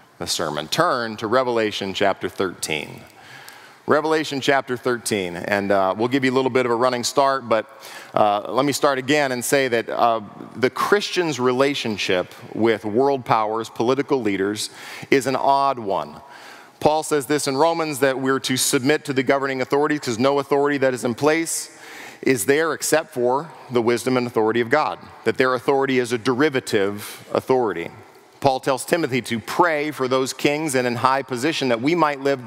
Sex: male